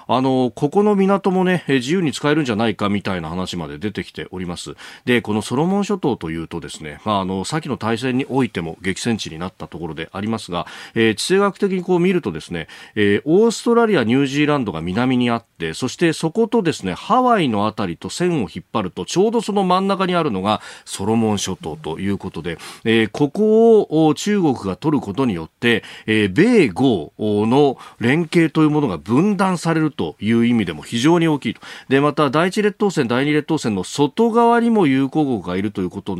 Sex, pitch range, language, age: male, 100-165 Hz, Japanese, 40-59